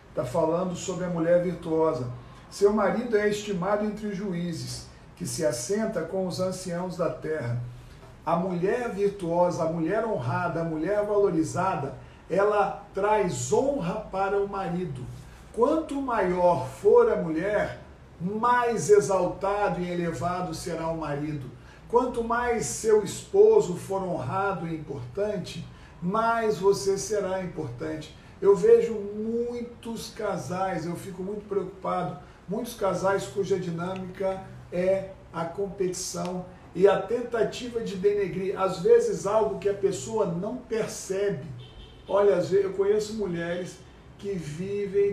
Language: Portuguese